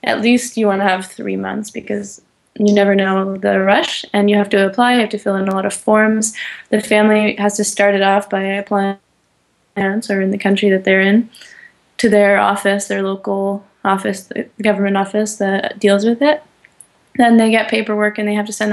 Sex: female